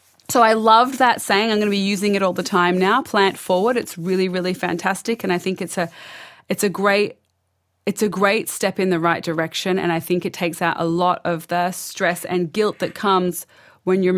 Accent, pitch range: Australian, 175-215 Hz